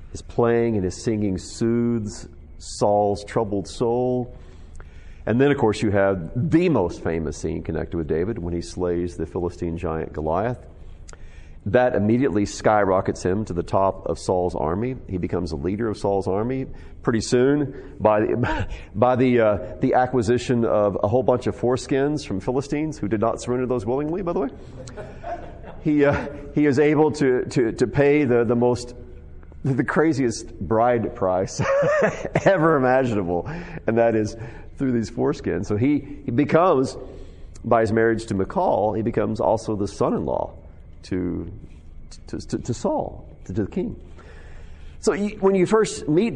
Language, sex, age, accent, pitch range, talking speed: English, male, 40-59, American, 85-125 Hz, 160 wpm